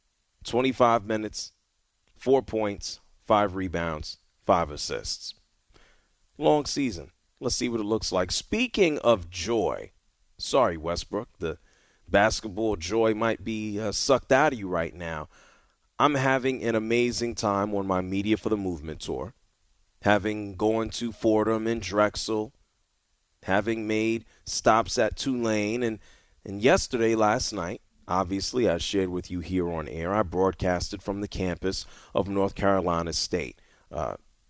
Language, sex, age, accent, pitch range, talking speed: English, male, 30-49, American, 90-115 Hz, 135 wpm